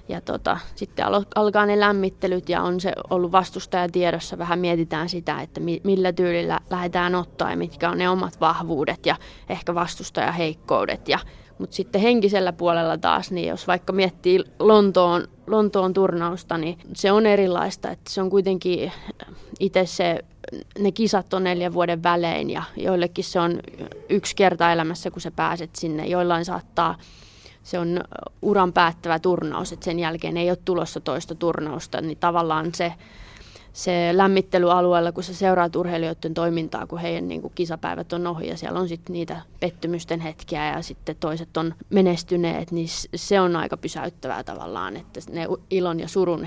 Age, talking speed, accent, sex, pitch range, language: 20-39, 160 wpm, native, female, 165-185 Hz, Finnish